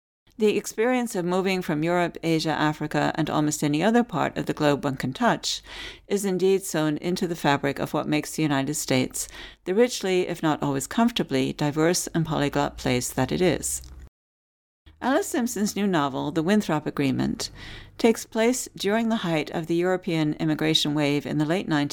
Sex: female